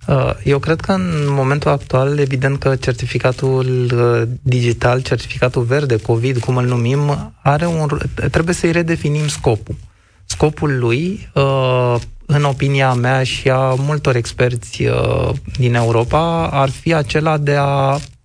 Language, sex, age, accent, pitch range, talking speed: Romanian, male, 20-39, native, 120-145 Hz, 120 wpm